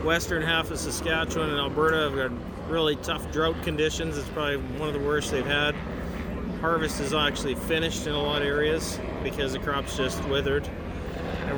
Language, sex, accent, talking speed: English, male, American, 180 wpm